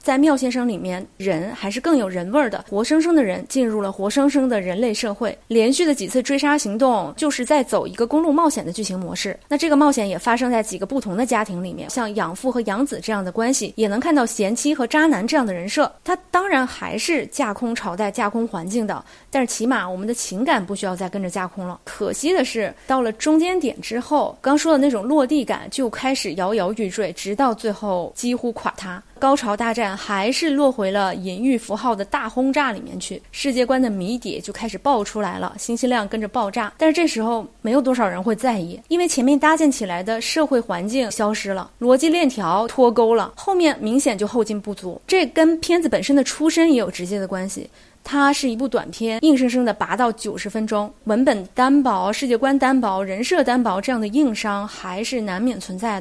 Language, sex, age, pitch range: Chinese, female, 20-39, 210-275 Hz